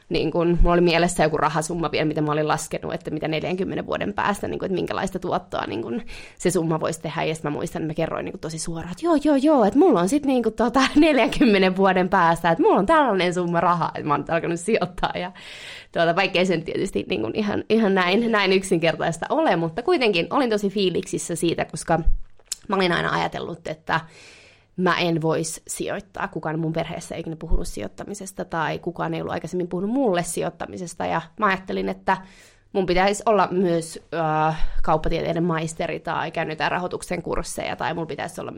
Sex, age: female, 20-39